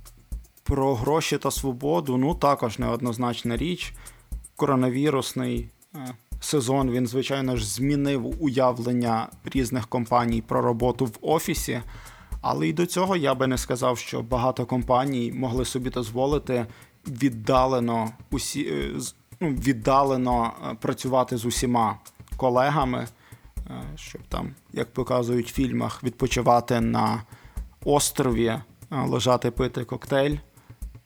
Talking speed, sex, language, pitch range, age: 105 wpm, male, Ukrainian, 120-135 Hz, 20-39